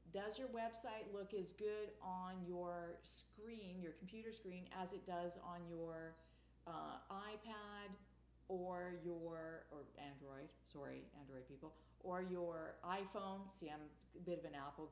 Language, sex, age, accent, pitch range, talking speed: English, female, 50-69, American, 150-200 Hz, 145 wpm